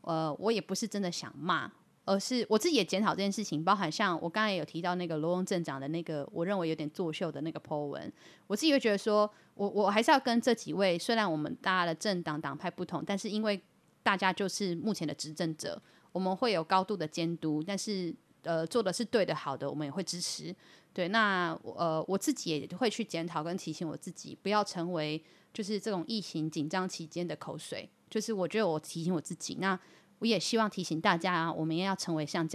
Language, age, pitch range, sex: Chinese, 30-49, 160-205 Hz, female